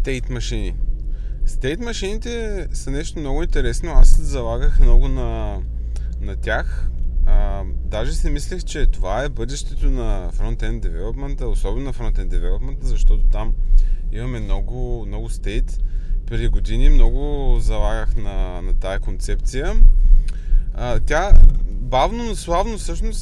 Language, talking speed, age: Bulgarian, 130 wpm, 20-39